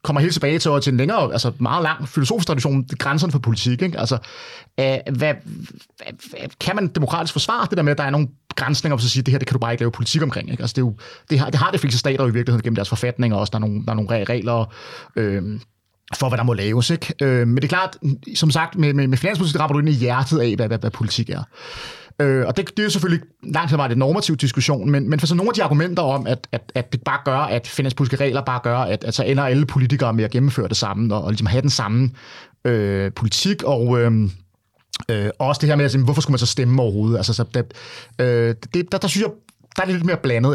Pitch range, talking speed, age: 120-155 Hz, 270 wpm, 30-49